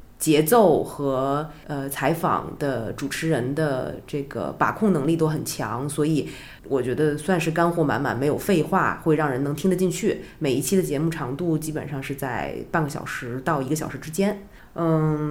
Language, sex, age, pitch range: Chinese, female, 20-39, 145-175 Hz